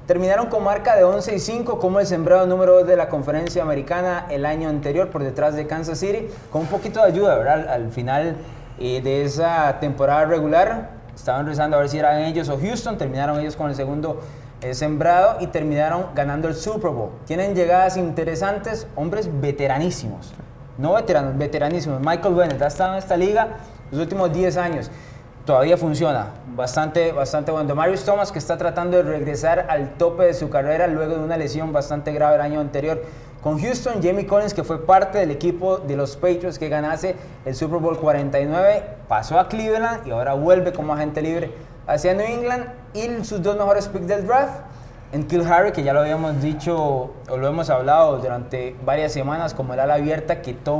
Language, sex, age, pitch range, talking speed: Spanish, male, 30-49, 145-180 Hz, 190 wpm